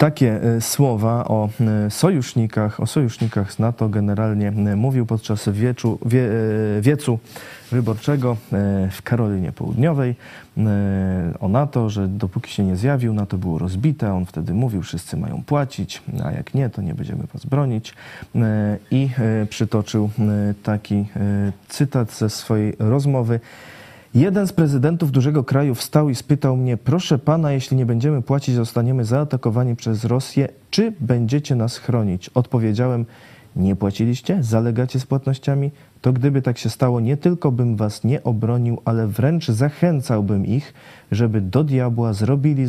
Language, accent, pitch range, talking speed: Polish, native, 105-135 Hz, 130 wpm